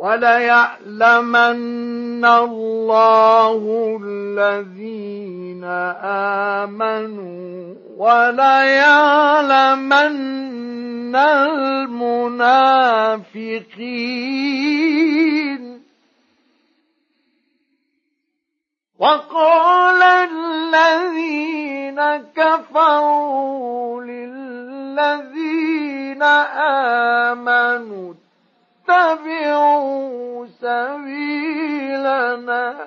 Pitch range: 240-320 Hz